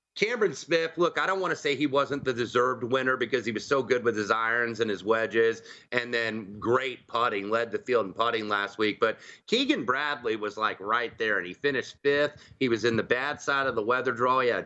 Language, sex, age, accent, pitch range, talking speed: English, male, 30-49, American, 120-145 Hz, 240 wpm